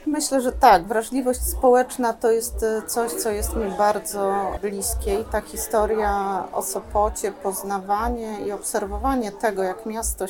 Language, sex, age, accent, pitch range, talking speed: Polish, female, 30-49, native, 195-240 Hz, 140 wpm